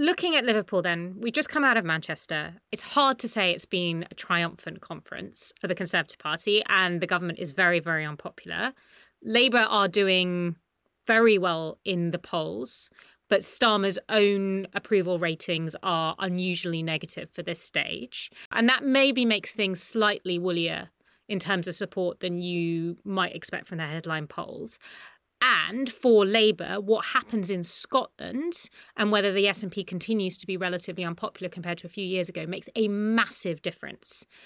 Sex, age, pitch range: female, 30-49, 175-220 Hz